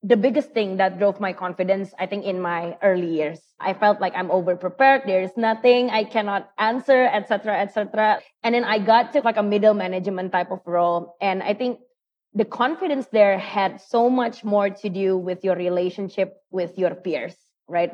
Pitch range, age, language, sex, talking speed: 185-225 Hz, 20-39, English, female, 195 wpm